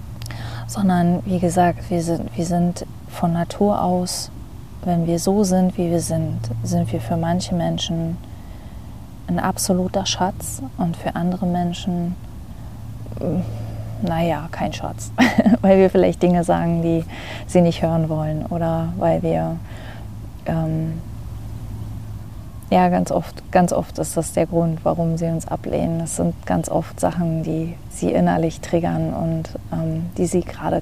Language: German